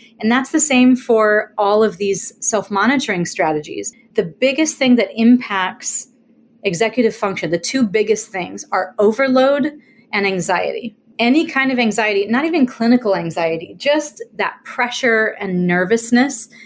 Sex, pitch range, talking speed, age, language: female, 195-240 Hz, 135 wpm, 30-49, English